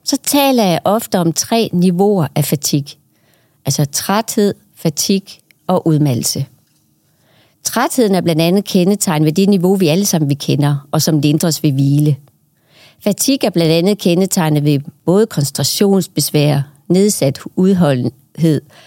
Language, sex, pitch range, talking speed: Danish, female, 150-200 Hz, 130 wpm